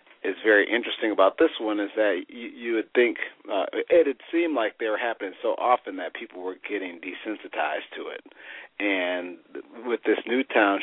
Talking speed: 185 wpm